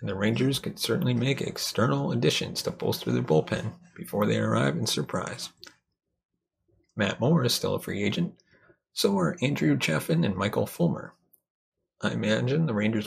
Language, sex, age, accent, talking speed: English, male, 30-49, American, 160 wpm